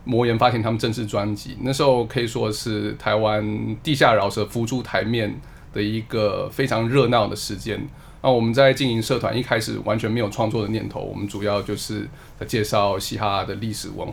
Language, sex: Chinese, male